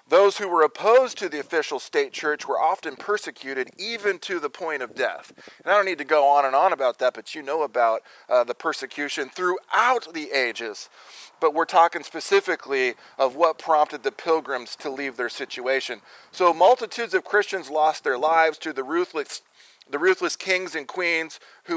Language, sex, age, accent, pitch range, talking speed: English, male, 40-59, American, 140-200 Hz, 185 wpm